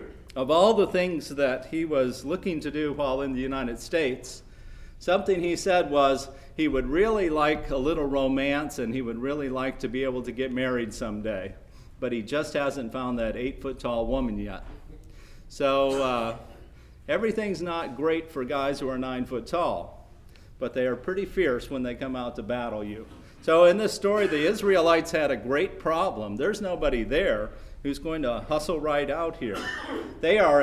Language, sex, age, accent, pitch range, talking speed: English, male, 50-69, American, 125-165 Hz, 185 wpm